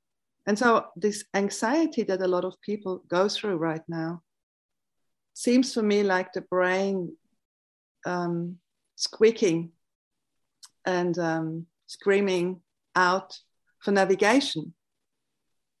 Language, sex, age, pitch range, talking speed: English, female, 50-69, 170-210 Hz, 105 wpm